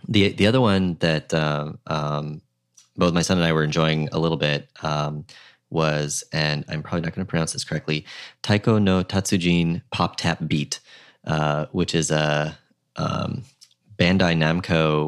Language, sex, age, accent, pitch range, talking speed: English, male, 20-39, American, 75-90 Hz, 165 wpm